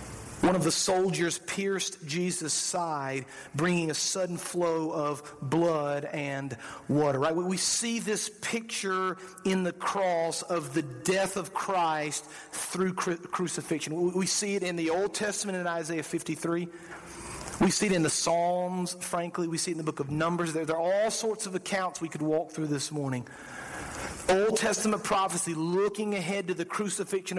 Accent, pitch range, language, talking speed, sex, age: American, 165-210 Hz, English, 165 wpm, male, 40-59